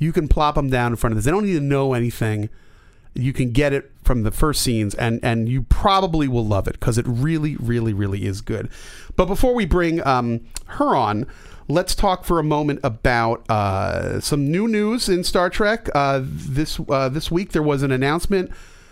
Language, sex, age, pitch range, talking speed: English, male, 40-59, 115-165 Hz, 210 wpm